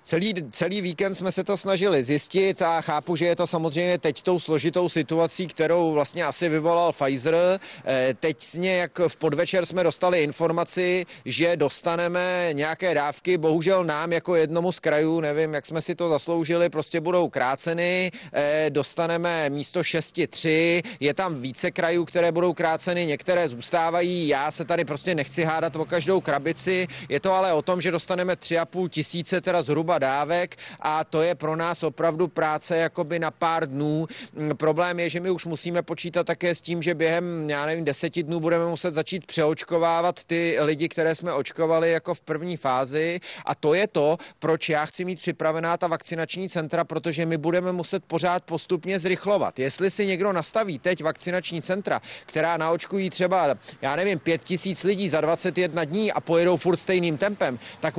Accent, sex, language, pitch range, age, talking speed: native, male, Czech, 160-180 Hz, 30-49, 170 wpm